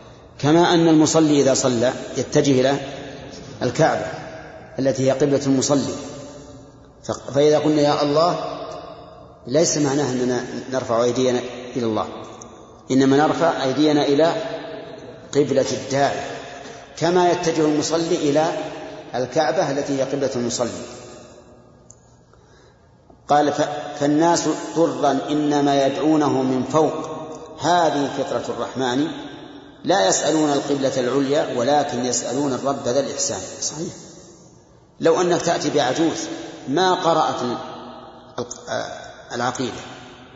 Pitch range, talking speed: 125-155 Hz, 95 wpm